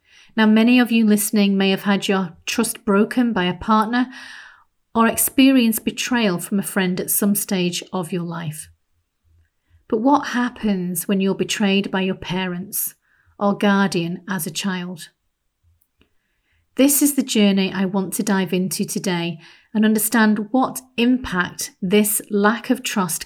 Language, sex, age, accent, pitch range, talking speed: English, female, 40-59, British, 180-220 Hz, 150 wpm